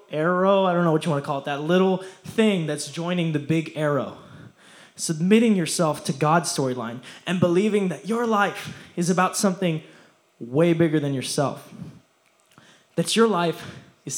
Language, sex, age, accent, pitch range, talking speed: English, male, 20-39, American, 150-190 Hz, 165 wpm